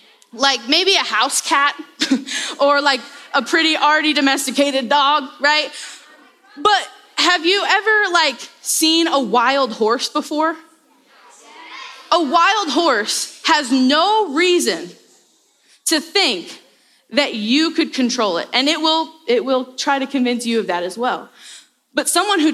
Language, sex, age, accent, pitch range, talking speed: English, female, 10-29, American, 245-325 Hz, 140 wpm